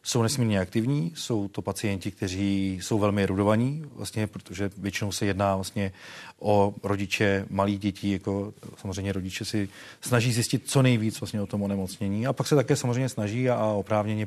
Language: Czech